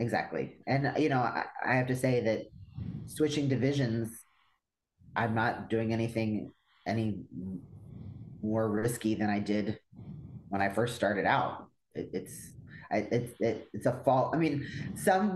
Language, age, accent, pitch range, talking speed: English, 30-49, American, 100-120 Hz, 150 wpm